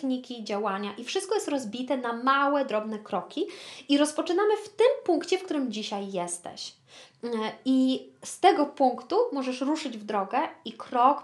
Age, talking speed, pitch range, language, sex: 20-39, 155 wpm, 220-310 Hz, Polish, female